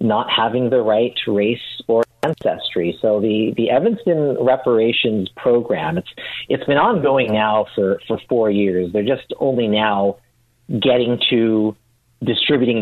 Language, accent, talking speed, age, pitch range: English, American, 140 wpm, 40-59, 100-120 Hz